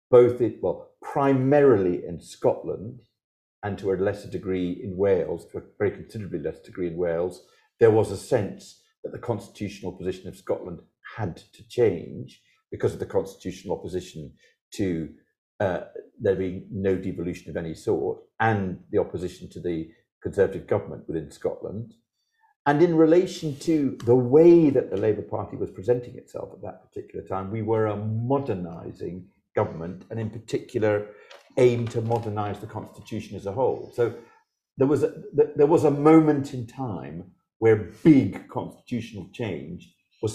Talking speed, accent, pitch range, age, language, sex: 155 wpm, British, 105-170 Hz, 50-69, English, male